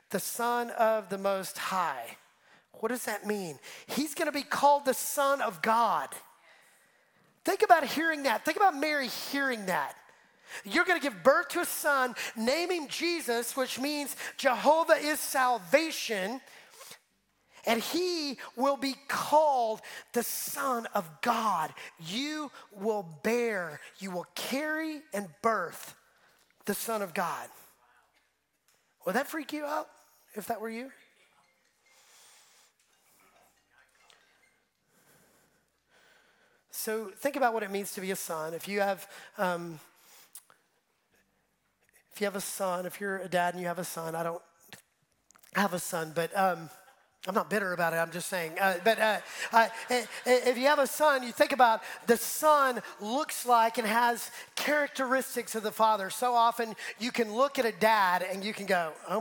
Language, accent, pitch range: English, American, 195-280 Hz